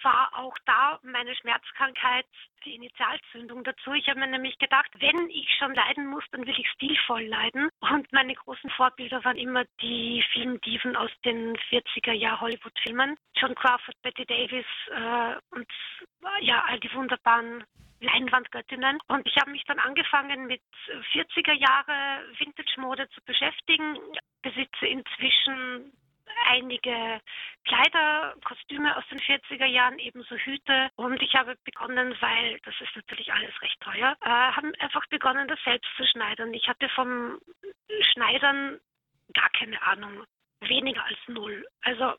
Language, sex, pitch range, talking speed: German, female, 245-285 Hz, 140 wpm